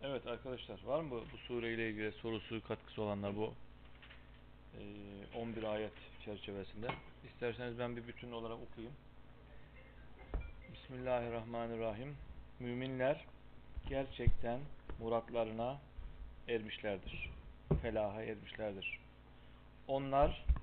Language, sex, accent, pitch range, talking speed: Turkish, male, native, 95-135 Hz, 85 wpm